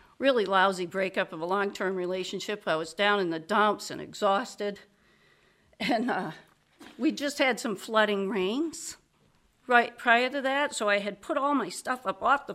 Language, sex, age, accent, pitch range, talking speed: English, female, 50-69, American, 195-260 Hz, 175 wpm